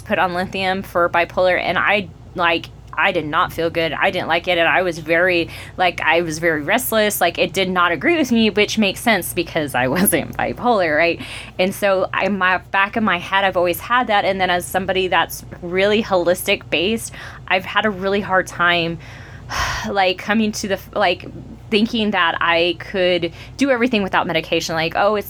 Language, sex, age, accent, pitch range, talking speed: English, female, 20-39, American, 165-195 Hz, 195 wpm